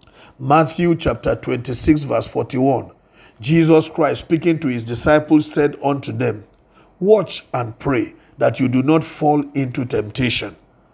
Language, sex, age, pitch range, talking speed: English, male, 50-69, 125-165 Hz, 130 wpm